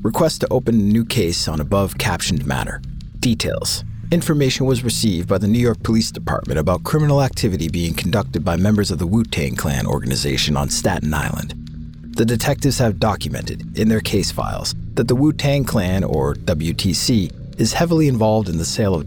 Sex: male